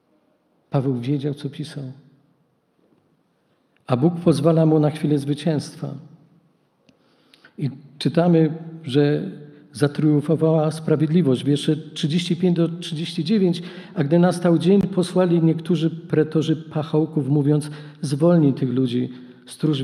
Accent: native